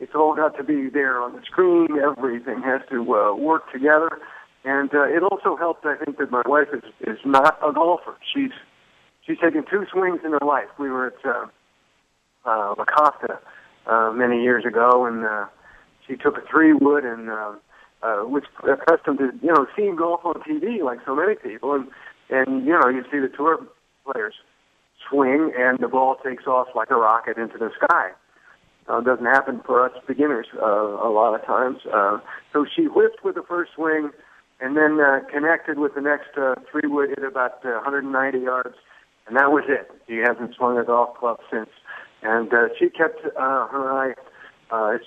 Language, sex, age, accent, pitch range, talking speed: English, male, 50-69, American, 125-160 Hz, 195 wpm